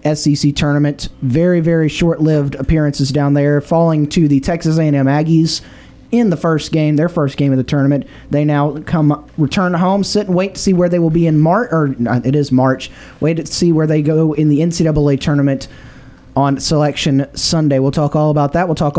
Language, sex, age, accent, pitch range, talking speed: English, male, 30-49, American, 140-165 Hz, 200 wpm